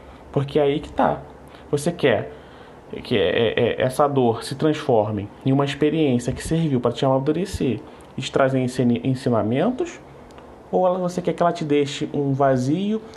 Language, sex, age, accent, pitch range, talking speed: Portuguese, male, 20-39, Brazilian, 130-175 Hz, 150 wpm